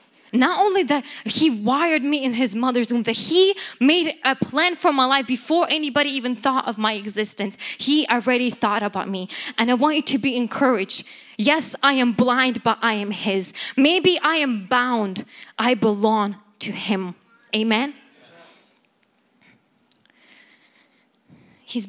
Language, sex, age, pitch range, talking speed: English, female, 10-29, 210-275 Hz, 150 wpm